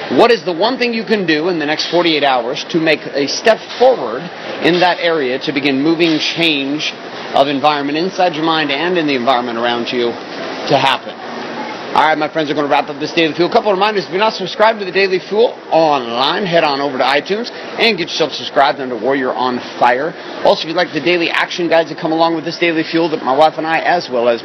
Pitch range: 125-165 Hz